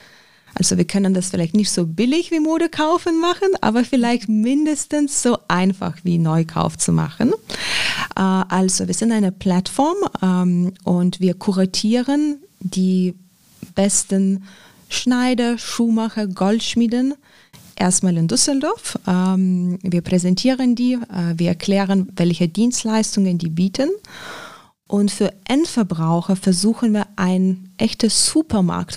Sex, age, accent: female, 20-39, German